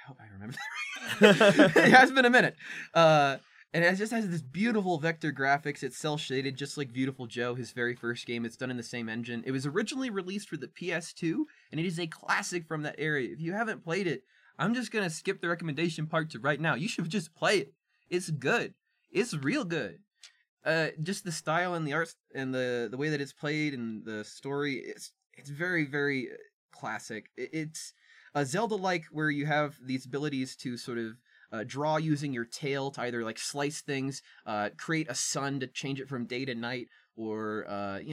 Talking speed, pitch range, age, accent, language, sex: 210 wpm, 120-165 Hz, 20-39, American, English, male